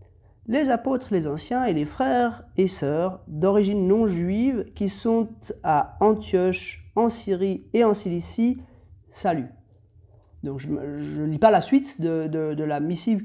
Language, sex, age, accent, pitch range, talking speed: French, male, 30-49, French, 150-215 Hz, 145 wpm